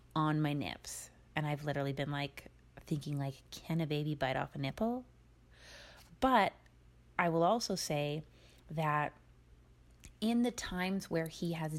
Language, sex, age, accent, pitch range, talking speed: English, female, 30-49, American, 150-195 Hz, 150 wpm